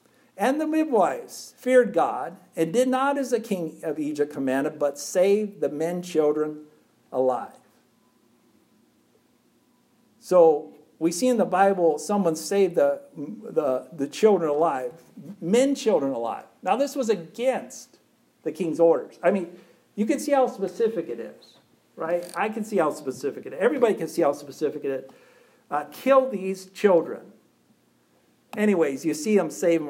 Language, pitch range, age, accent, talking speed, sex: English, 155-245 Hz, 60-79, American, 155 wpm, male